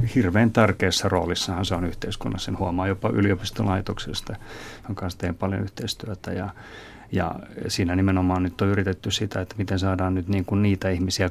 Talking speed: 165 wpm